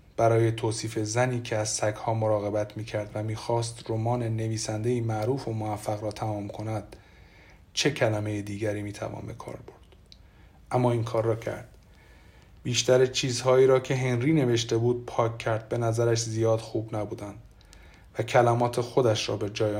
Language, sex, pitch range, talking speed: Persian, male, 105-125 Hz, 150 wpm